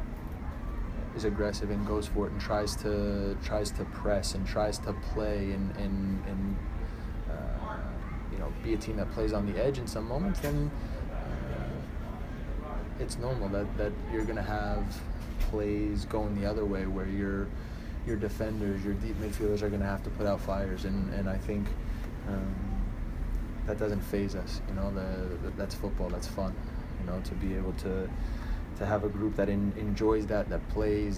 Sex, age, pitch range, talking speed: male, 20-39, 95-105 Hz, 180 wpm